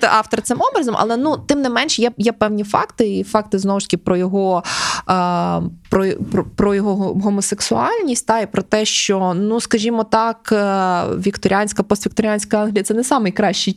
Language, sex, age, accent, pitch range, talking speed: Ukrainian, female, 20-39, native, 170-210 Hz, 165 wpm